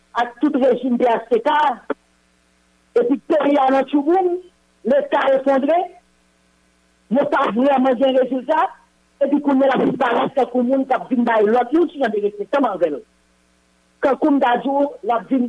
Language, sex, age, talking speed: English, female, 50-69, 175 wpm